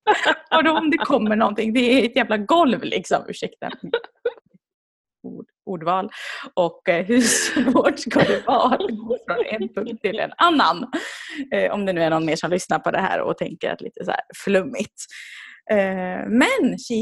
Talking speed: 185 wpm